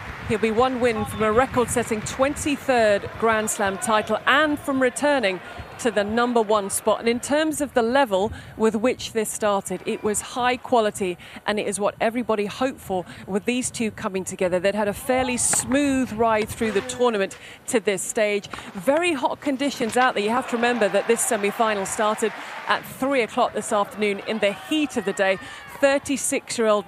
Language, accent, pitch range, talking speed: French, British, 205-255 Hz, 190 wpm